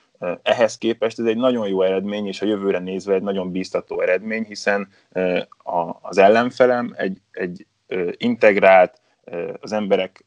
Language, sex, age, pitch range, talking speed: Hungarian, male, 20-39, 95-110 Hz, 135 wpm